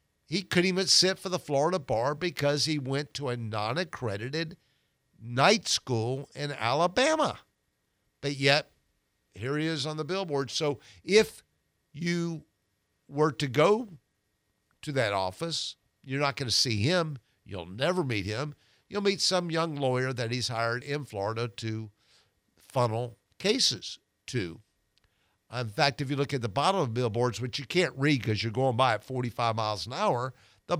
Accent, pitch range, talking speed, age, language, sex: American, 110-145 Hz, 165 wpm, 50-69, English, male